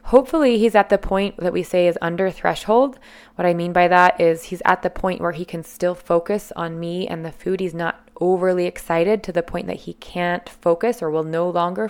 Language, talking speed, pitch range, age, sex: English, 230 wpm, 170-215 Hz, 20-39, female